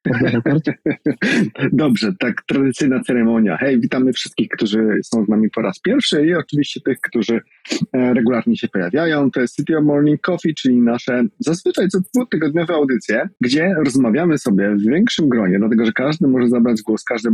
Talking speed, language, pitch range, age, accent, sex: 165 wpm, Polish, 115-165 Hz, 30-49, native, male